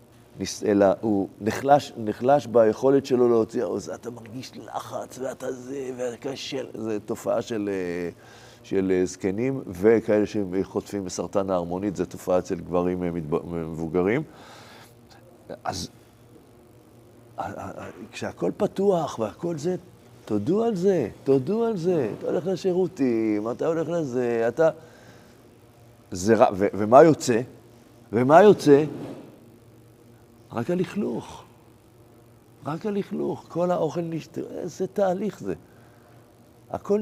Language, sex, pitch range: Hebrew, male, 115-170 Hz